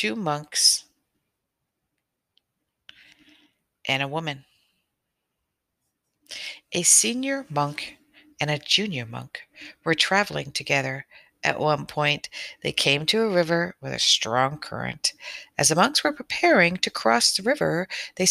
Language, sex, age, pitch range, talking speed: English, female, 60-79, 145-200 Hz, 120 wpm